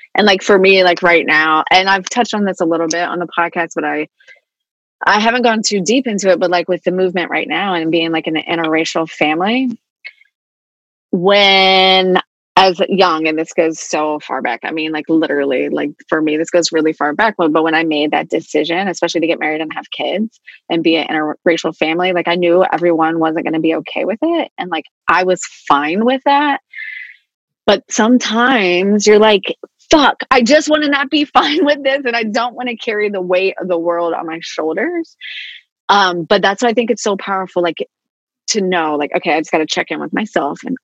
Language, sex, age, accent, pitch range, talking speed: English, female, 20-39, American, 165-215 Hz, 215 wpm